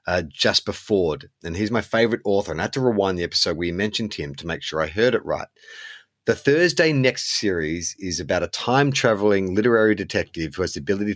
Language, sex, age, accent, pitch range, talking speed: English, male, 30-49, Australian, 85-115 Hz, 220 wpm